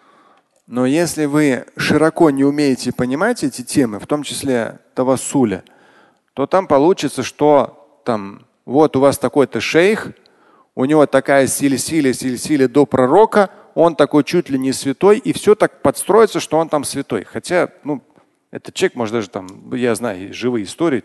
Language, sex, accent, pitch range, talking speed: Russian, male, native, 120-165 Hz, 160 wpm